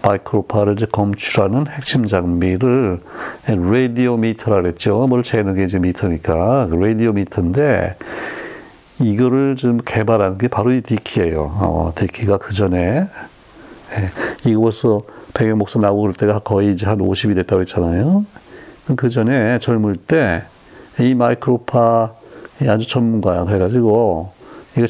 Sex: male